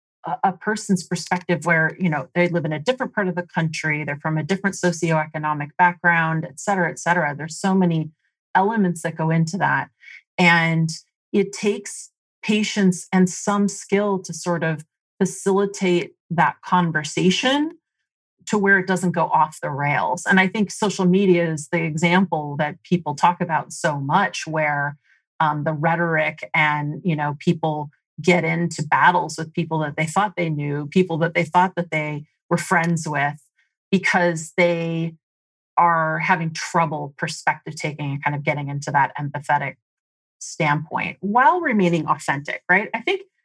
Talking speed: 160 wpm